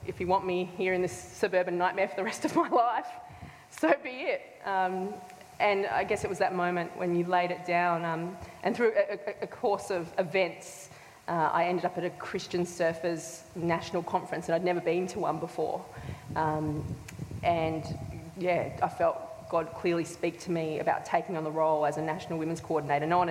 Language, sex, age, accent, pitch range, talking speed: English, female, 20-39, Australian, 170-190 Hz, 200 wpm